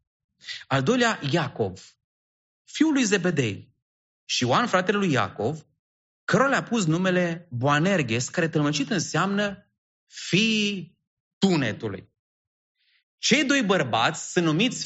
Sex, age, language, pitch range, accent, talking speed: male, 30-49, English, 115-180 Hz, Romanian, 105 wpm